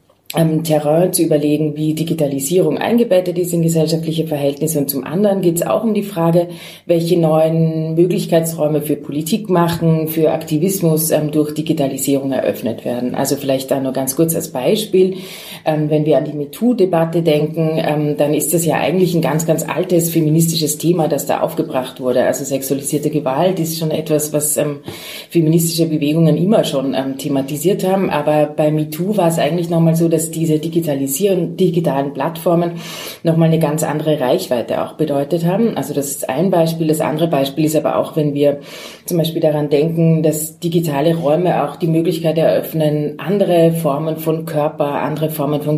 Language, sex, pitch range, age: German, female, 150-170 Hz, 30-49